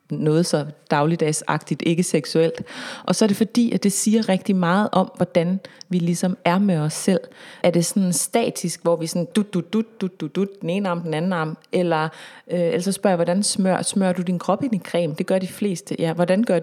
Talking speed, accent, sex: 230 wpm, native, female